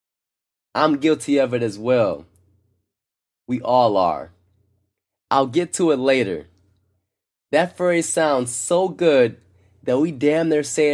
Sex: male